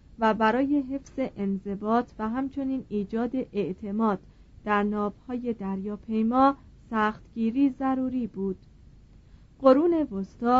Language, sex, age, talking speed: Persian, female, 30-49, 100 wpm